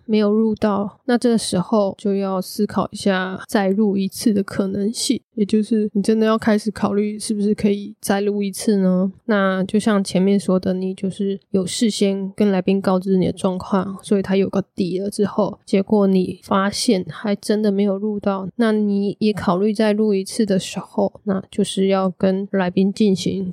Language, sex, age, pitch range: Chinese, female, 10-29, 190-215 Hz